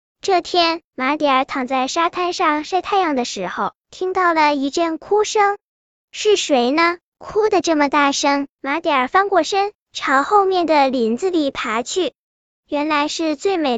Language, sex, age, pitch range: Chinese, male, 10-29, 275-350 Hz